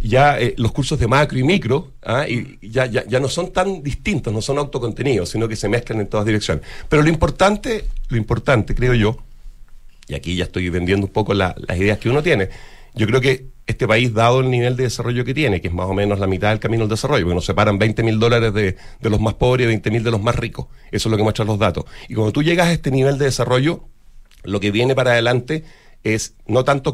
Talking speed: 245 wpm